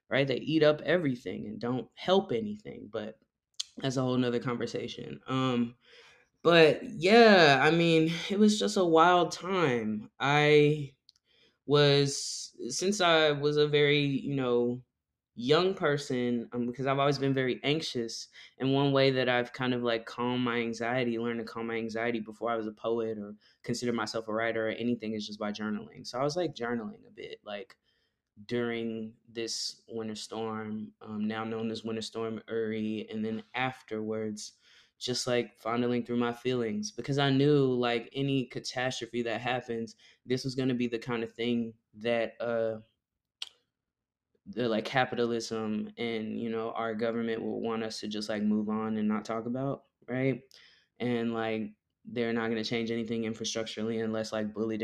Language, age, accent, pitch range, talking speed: English, 20-39, American, 110-135 Hz, 170 wpm